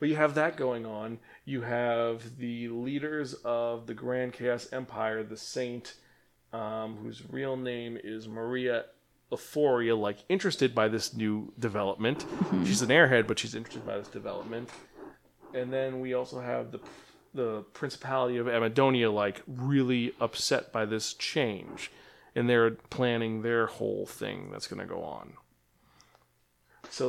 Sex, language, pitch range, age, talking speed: male, English, 110-145 Hz, 30-49, 150 wpm